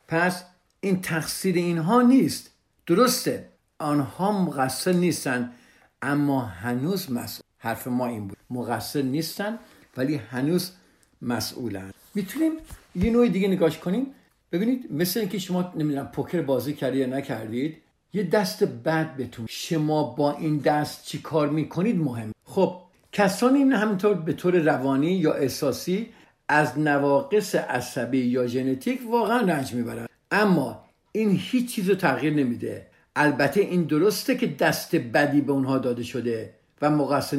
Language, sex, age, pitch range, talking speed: Persian, male, 60-79, 130-180 Hz, 135 wpm